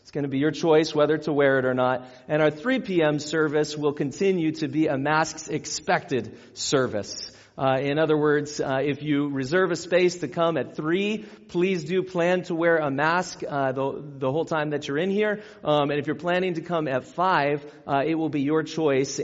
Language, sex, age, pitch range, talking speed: English, male, 40-59, 135-175 Hz, 215 wpm